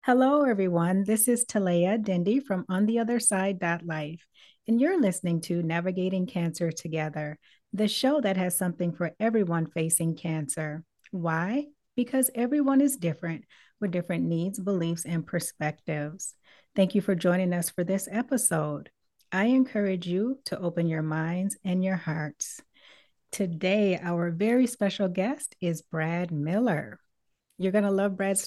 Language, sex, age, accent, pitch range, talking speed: English, female, 30-49, American, 165-210 Hz, 135 wpm